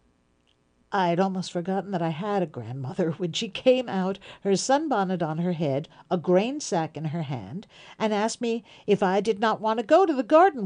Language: English